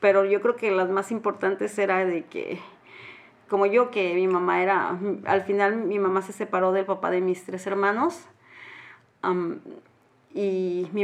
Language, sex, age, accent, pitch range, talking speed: English, female, 30-49, Mexican, 185-225 Hz, 165 wpm